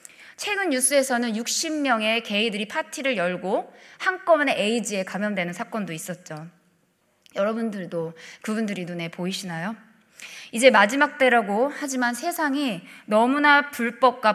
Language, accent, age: Korean, native, 20-39